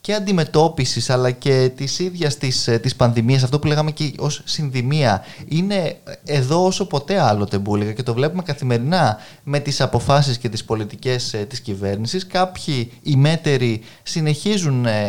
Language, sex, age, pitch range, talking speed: Greek, male, 20-39, 120-160 Hz, 140 wpm